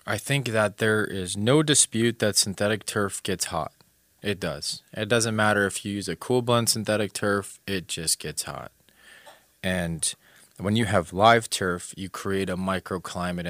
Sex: male